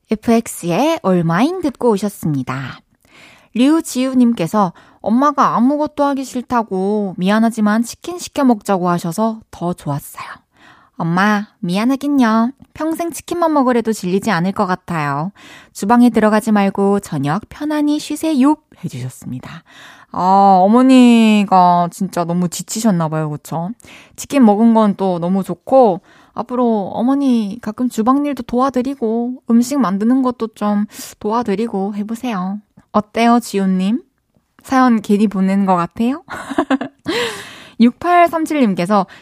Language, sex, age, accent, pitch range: Korean, female, 20-39, native, 185-250 Hz